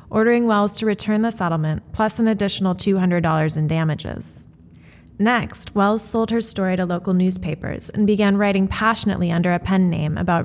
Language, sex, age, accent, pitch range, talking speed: English, female, 20-39, American, 175-215 Hz, 165 wpm